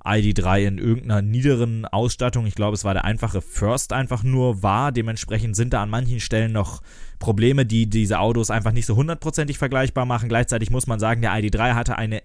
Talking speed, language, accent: 195 wpm, German, German